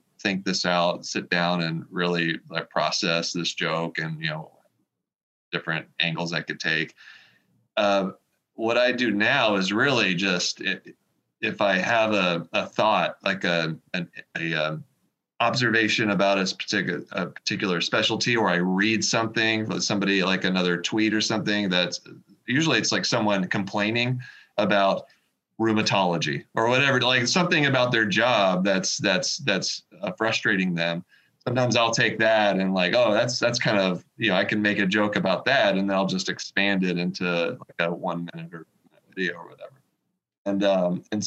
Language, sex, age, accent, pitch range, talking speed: English, male, 30-49, American, 90-115 Hz, 165 wpm